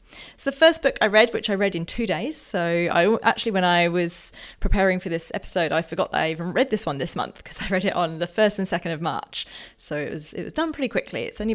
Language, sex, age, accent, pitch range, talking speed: English, female, 30-49, British, 175-225 Hz, 275 wpm